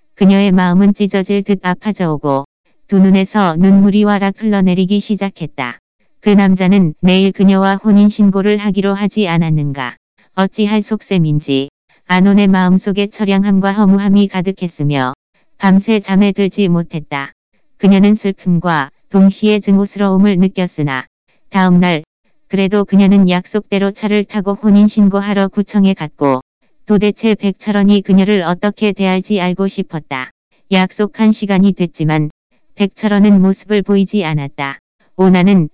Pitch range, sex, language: 180-205 Hz, female, Korean